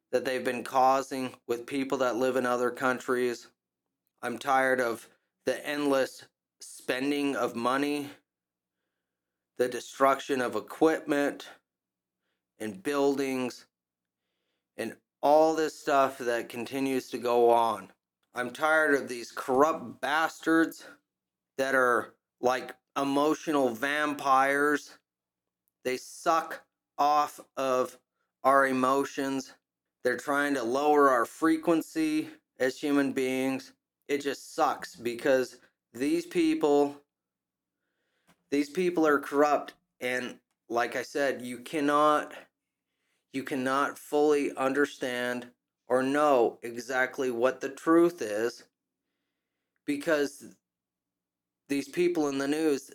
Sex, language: male, English